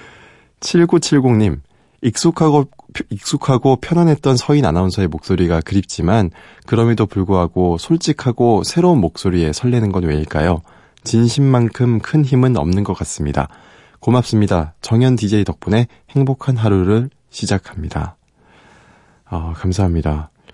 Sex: male